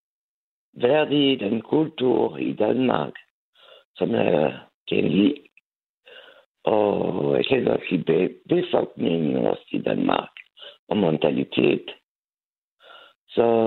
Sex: male